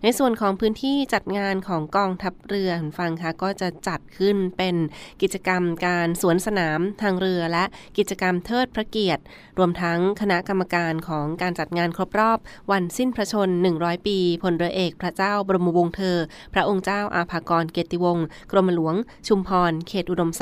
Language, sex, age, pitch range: Thai, female, 20-39, 165-195 Hz